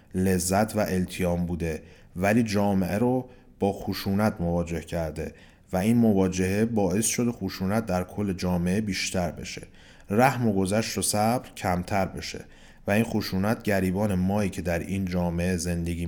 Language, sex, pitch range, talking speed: Persian, male, 90-115 Hz, 145 wpm